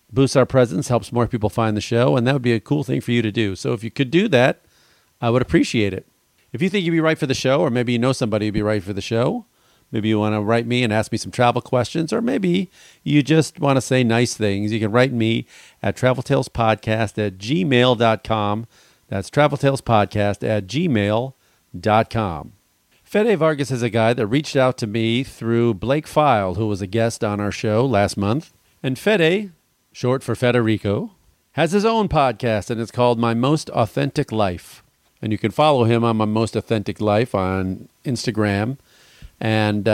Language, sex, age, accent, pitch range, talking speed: English, male, 40-59, American, 110-135 Hz, 200 wpm